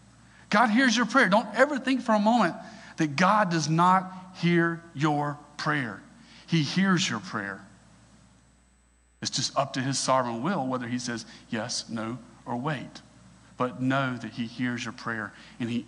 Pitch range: 120-170 Hz